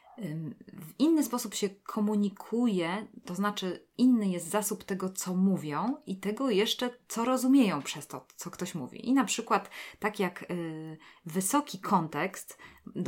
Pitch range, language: 170-225 Hz, Polish